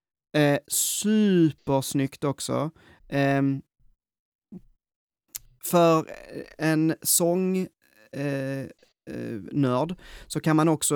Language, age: Swedish, 20-39